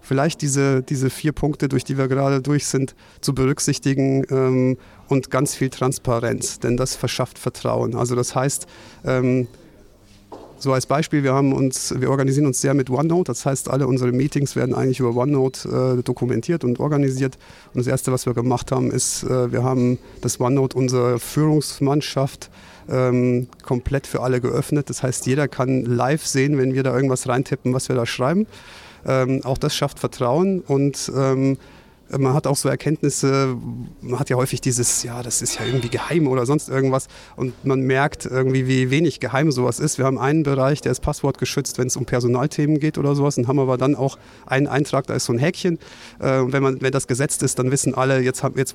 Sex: male